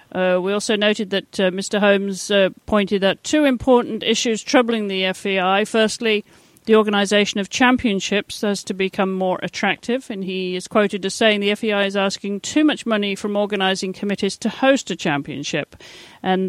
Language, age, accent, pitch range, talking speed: English, 50-69, British, 185-215 Hz, 175 wpm